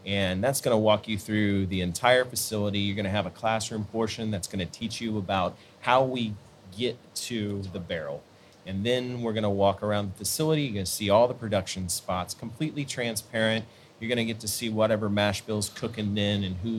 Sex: male